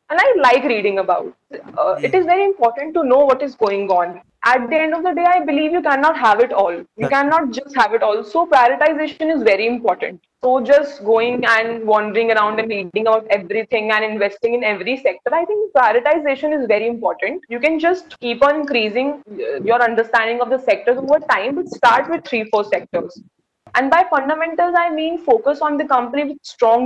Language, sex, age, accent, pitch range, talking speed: English, female, 20-39, Indian, 225-310 Hz, 205 wpm